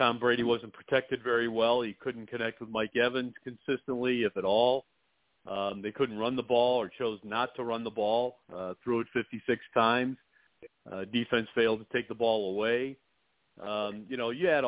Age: 40-59